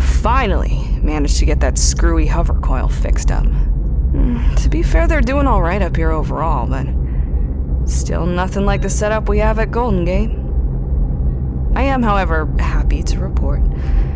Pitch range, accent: 65-75 Hz, American